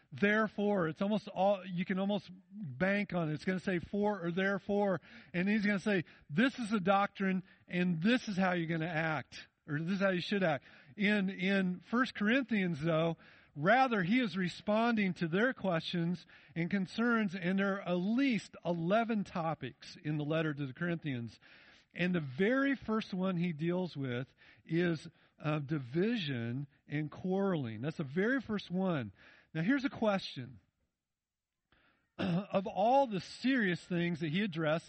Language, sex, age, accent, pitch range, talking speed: English, male, 50-69, American, 150-195 Hz, 170 wpm